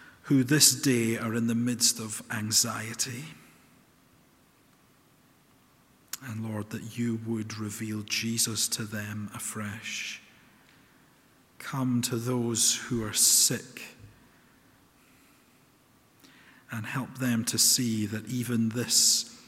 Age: 50-69